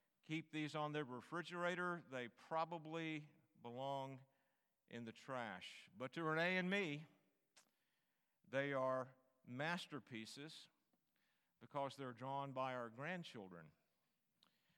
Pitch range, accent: 120-160 Hz, American